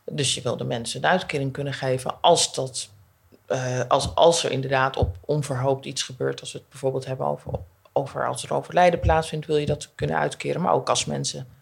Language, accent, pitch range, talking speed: Dutch, Dutch, 130-150 Hz, 190 wpm